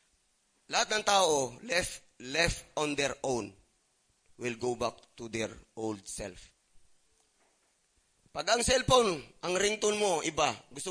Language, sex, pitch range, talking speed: English, male, 145-220 Hz, 125 wpm